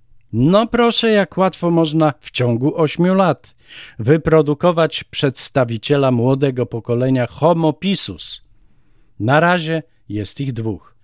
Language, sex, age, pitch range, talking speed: Polish, male, 50-69, 110-150 Hz, 110 wpm